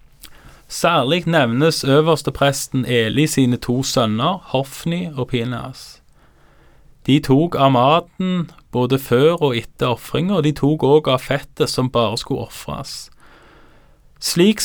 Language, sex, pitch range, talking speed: Danish, male, 130-160 Hz, 120 wpm